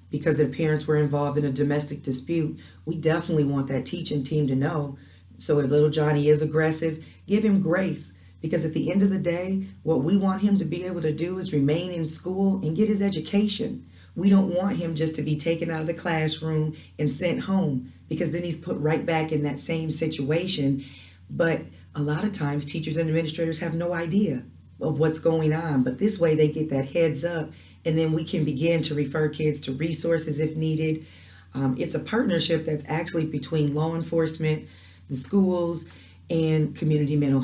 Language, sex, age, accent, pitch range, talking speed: English, female, 40-59, American, 145-170 Hz, 200 wpm